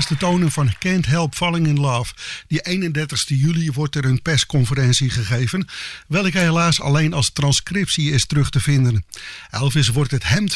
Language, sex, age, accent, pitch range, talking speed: English, male, 50-69, Dutch, 140-175 Hz, 170 wpm